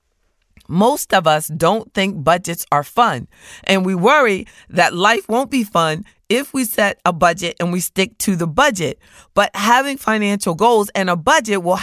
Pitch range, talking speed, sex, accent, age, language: 155-215 Hz, 180 wpm, female, American, 40-59, English